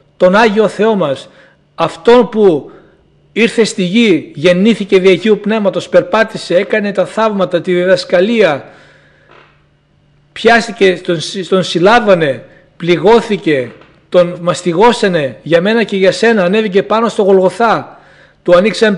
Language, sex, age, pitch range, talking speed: Greek, male, 60-79, 175-220 Hz, 115 wpm